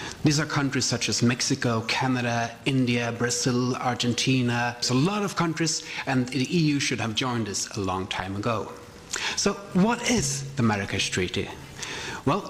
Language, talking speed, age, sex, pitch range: English, 160 wpm, 40-59, male, 125-165 Hz